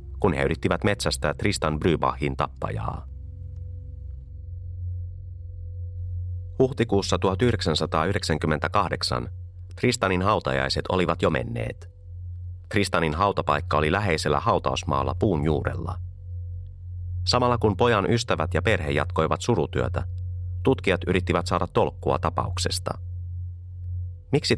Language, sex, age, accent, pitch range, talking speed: Finnish, male, 30-49, native, 80-95 Hz, 85 wpm